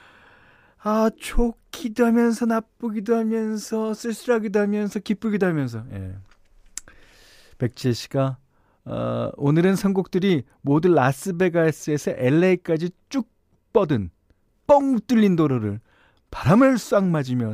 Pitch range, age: 105-180 Hz, 40-59